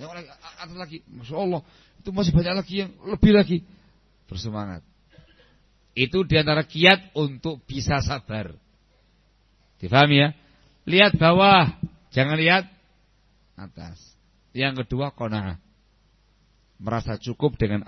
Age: 50-69